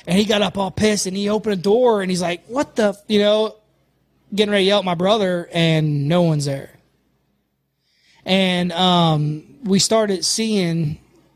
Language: English